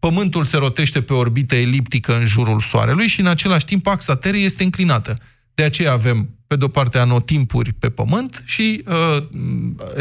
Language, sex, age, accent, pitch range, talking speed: Romanian, male, 20-39, native, 125-170 Hz, 170 wpm